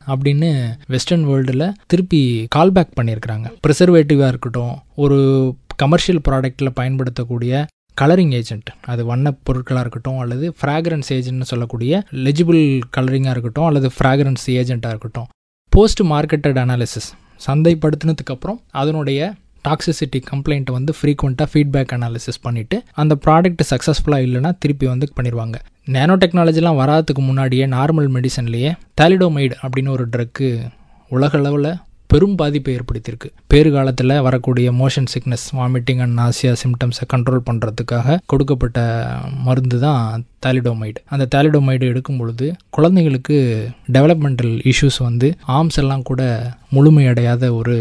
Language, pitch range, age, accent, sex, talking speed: English, 120-150 Hz, 20-39, Indian, male, 110 wpm